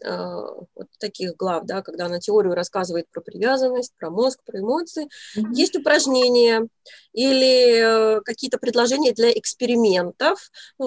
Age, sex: 20-39, female